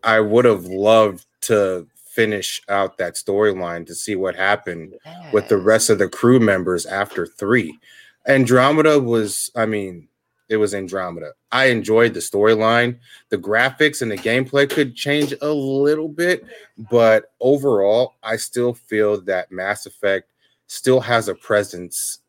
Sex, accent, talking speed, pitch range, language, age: male, American, 150 wpm, 95-125 Hz, English, 30-49